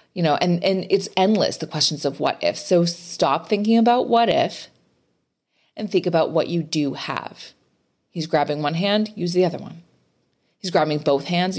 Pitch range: 160-220 Hz